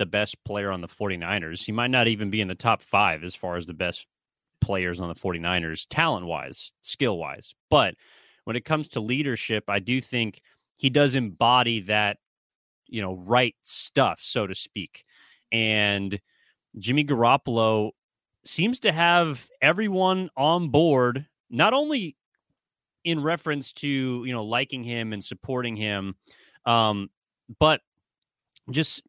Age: 30-49